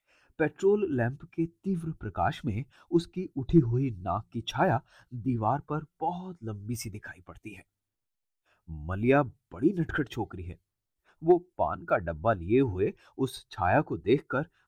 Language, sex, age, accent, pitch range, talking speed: Hindi, male, 30-49, native, 100-160 Hz, 140 wpm